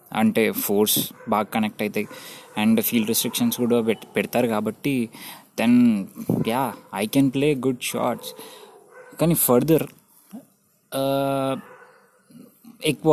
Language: Telugu